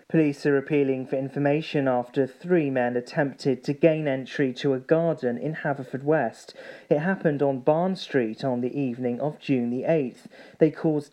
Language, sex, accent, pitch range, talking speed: English, male, British, 135-160 Hz, 165 wpm